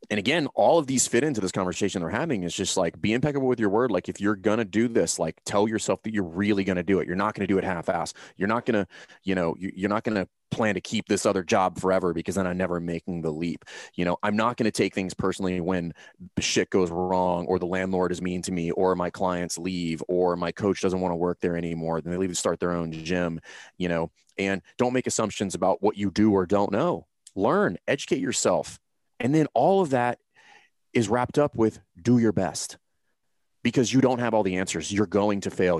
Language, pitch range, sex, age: English, 90-105 Hz, male, 30-49